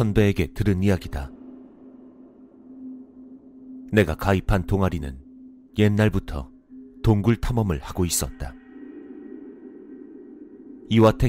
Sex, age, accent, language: male, 40-59, native, Korean